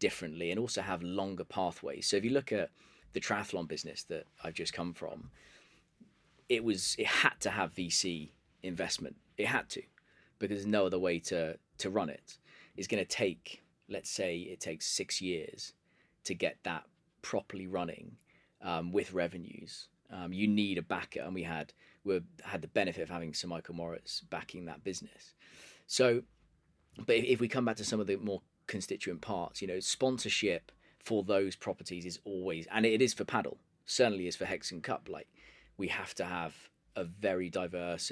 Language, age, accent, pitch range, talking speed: English, 20-39, British, 85-100 Hz, 185 wpm